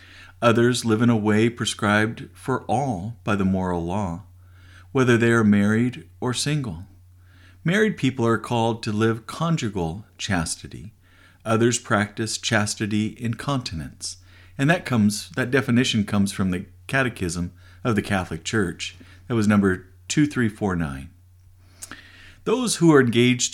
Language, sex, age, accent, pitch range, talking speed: English, male, 50-69, American, 90-120 Hz, 140 wpm